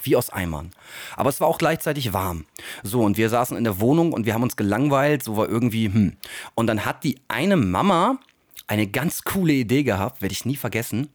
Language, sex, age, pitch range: German, male, 40-59, 110-150 Hz